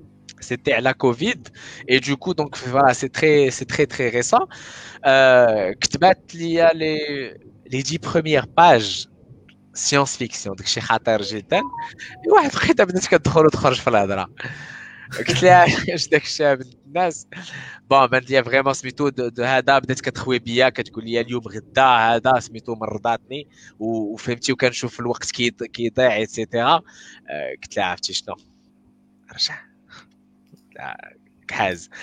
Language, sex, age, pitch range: Arabic, male, 20-39, 110-150 Hz